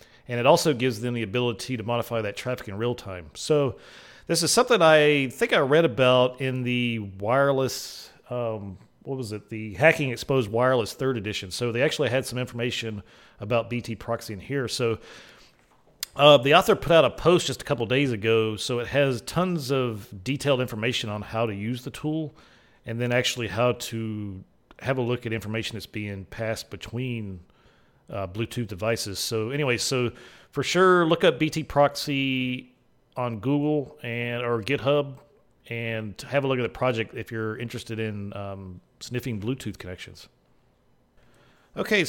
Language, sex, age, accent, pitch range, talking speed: English, male, 40-59, American, 110-135 Hz, 170 wpm